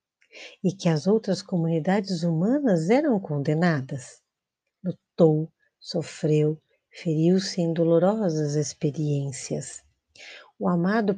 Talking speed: 85 wpm